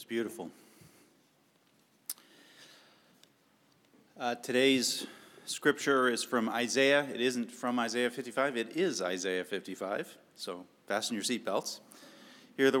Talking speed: 110 wpm